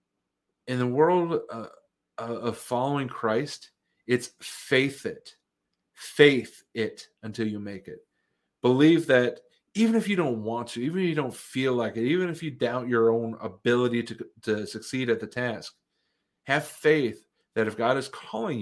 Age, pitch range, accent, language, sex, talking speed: 40-59, 110-140 Hz, American, English, male, 165 wpm